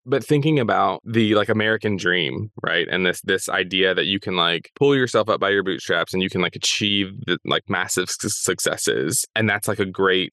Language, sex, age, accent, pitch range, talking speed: English, male, 20-39, American, 90-115 Hz, 215 wpm